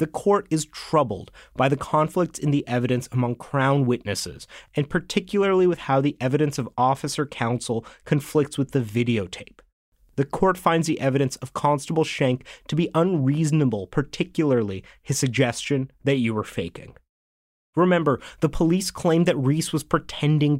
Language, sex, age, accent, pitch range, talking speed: English, male, 30-49, American, 125-160 Hz, 150 wpm